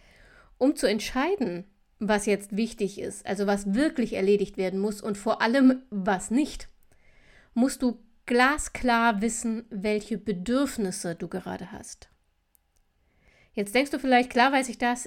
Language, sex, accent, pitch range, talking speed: German, female, German, 210-255 Hz, 140 wpm